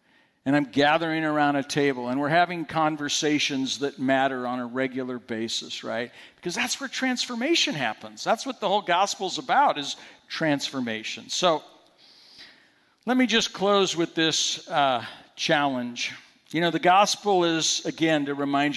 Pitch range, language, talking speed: 130-170 Hz, English, 155 wpm